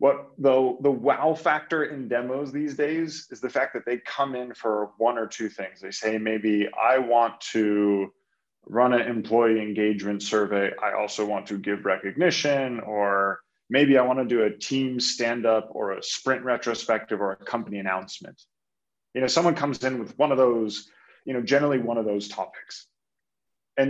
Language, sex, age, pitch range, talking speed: English, male, 30-49, 105-140 Hz, 180 wpm